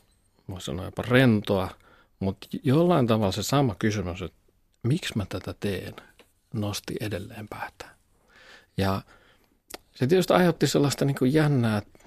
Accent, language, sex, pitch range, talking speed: native, Finnish, male, 95-125 Hz, 130 wpm